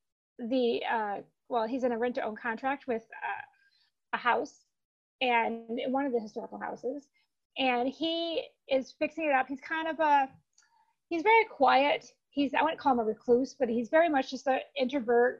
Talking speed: 175 wpm